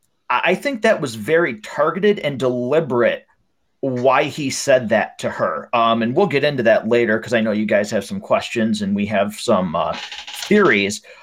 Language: English